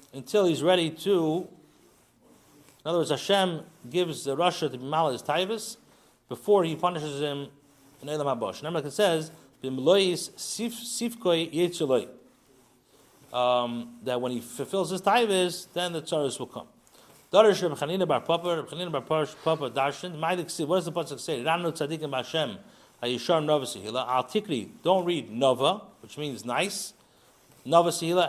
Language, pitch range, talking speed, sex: English, 135-180 Hz, 100 wpm, male